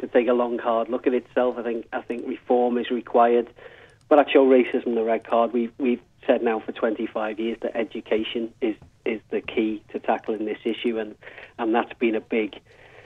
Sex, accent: male, British